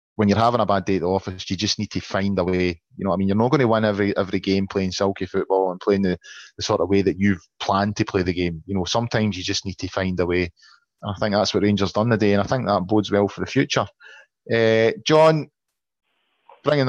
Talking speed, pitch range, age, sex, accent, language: 265 wpm, 95-110 Hz, 30-49, male, British, English